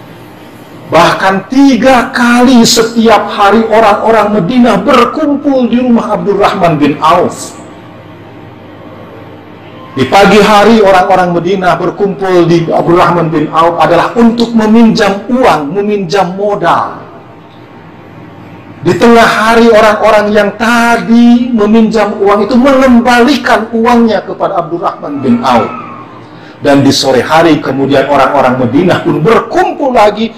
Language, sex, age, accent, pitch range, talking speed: Indonesian, male, 50-69, native, 135-220 Hz, 105 wpm